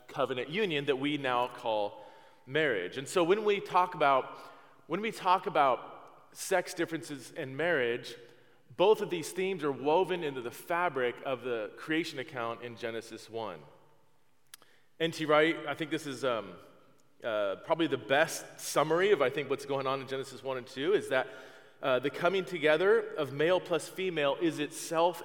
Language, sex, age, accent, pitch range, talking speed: English, male, 30-49, American, 135-185 Hz, 175 wpm